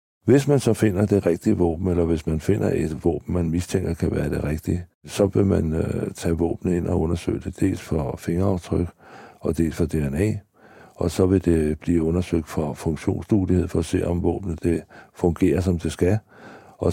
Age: 60-79